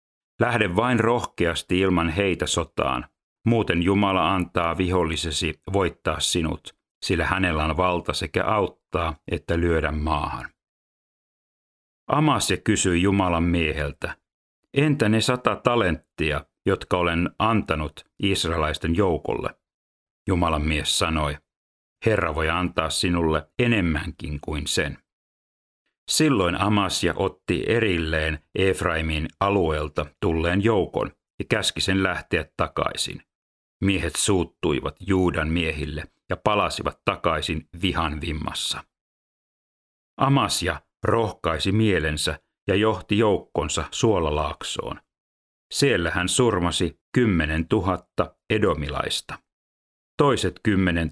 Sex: male